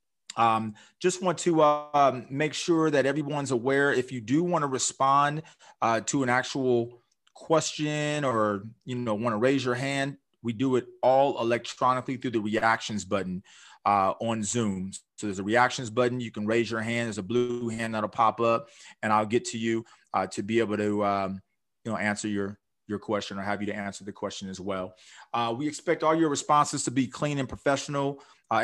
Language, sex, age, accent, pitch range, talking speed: English, male, 30-49, American, 110-135 Hz, 200 wpm